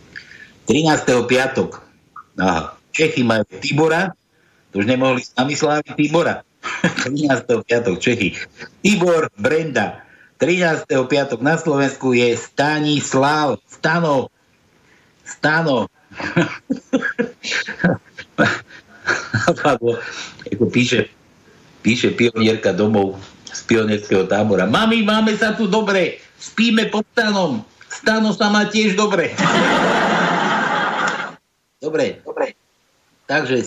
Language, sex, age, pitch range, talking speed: Slovak, male, 60-79, 115-175 Hz, 85 wpm